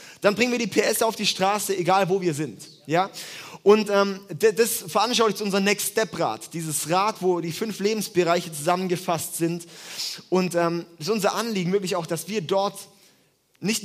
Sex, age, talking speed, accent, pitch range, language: male, 20-39, 175 wpm, German, 175-220 Hz, German